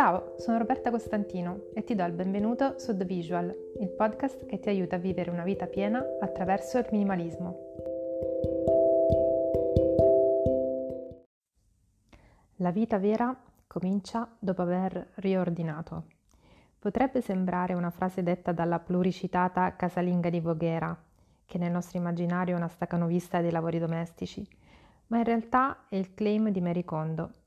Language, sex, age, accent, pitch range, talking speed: Italian, female, 30-49, native, 170-200 Hz, 130 wpm